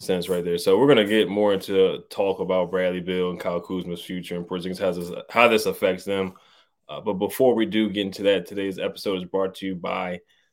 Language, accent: English, American